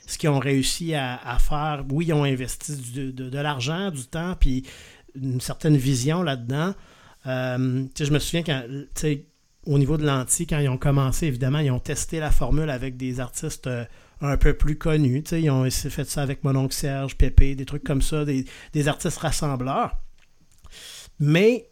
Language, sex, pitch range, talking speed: French, male, 135-155 Hz, 180 wpm